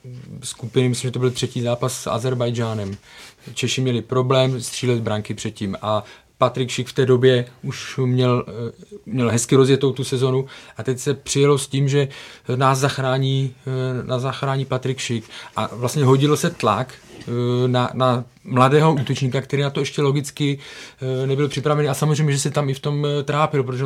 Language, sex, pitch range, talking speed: Czech, male, 120-135 Hz, 165 wpm